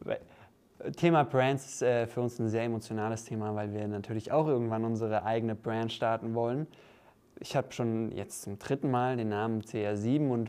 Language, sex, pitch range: German, male, 115-135 Hz